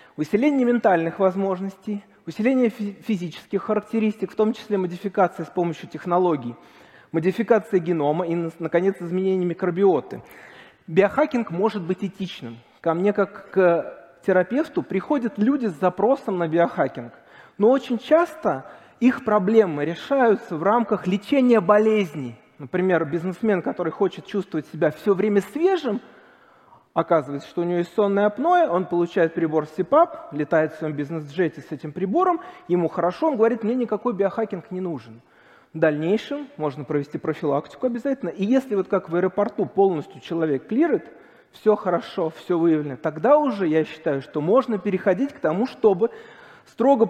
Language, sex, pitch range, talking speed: Russian, male, 165-220 Hz, 140 wpm